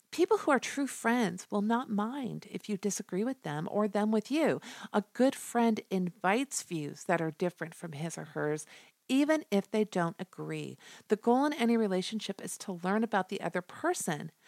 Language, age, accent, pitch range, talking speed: English, 50-69, American, 170-225 Hz, 190 wpm